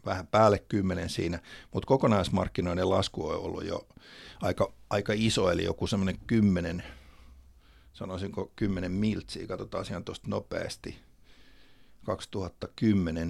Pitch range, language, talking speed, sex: 90-105 Hz, Finnish, 115 wpm, male